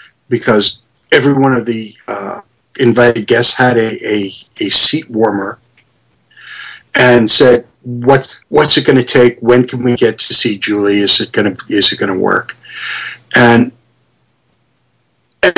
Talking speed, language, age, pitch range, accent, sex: 150 wpm, English, 50-69, 105-135 Hz, American, male